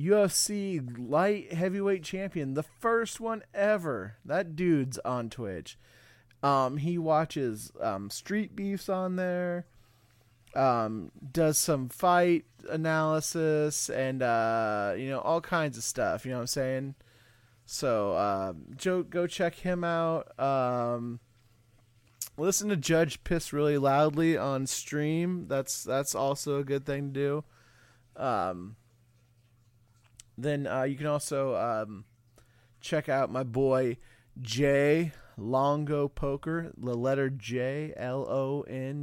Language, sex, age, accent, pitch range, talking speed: English, male, 20-39, American, 120-155 Hz, 125 wpm